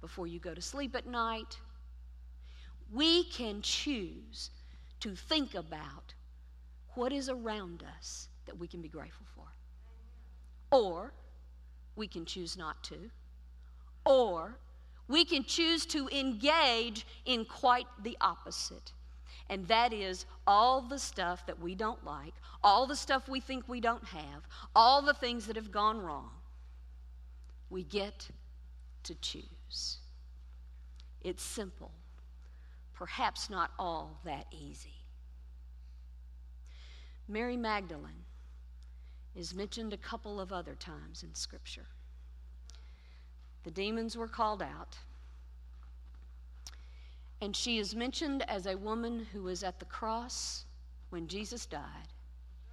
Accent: American